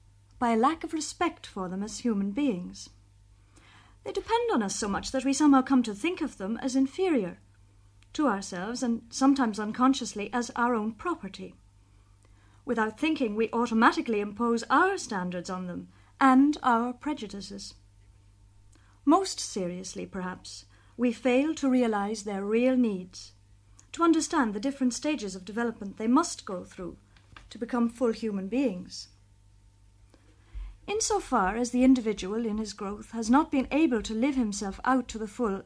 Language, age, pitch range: English, 50-69, 180-265 Hz